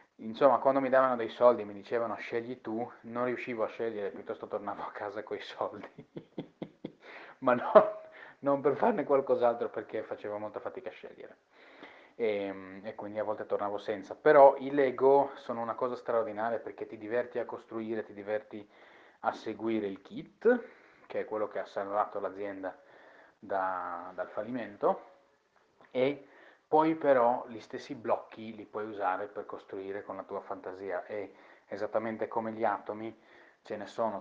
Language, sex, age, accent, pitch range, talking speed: Italian, male, 30-49, native, 105-130 Hz, 160 wpm